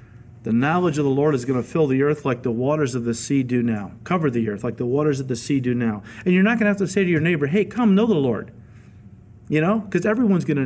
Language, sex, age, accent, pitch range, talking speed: English, male, 40-59, American, 115-160 Hz, 295 wpm